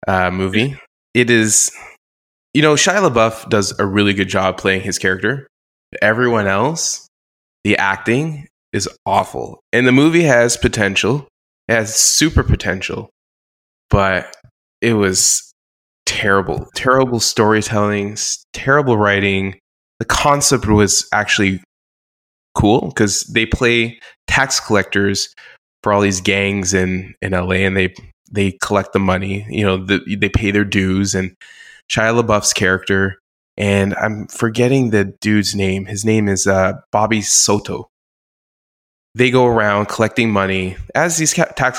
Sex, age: male, 20-39